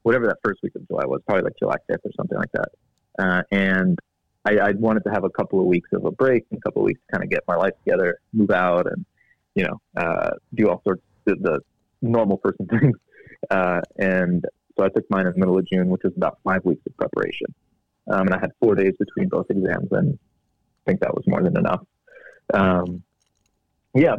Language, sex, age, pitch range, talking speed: English, male, 30-49, 95-105 Hz, 230 wpm